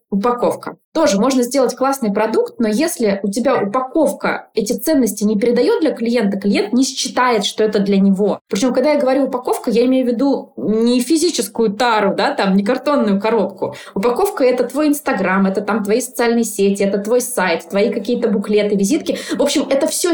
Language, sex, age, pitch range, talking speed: Russian, female, 20-39, 210-265 Hz, 180 wpm